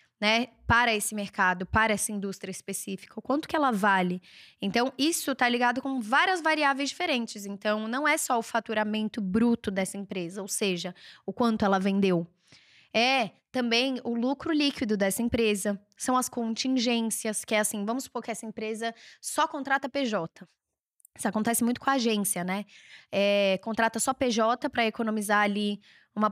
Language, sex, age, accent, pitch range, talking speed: Portuguese, female, 10-29, Brazilian, 200-255 Hz, 165 wpm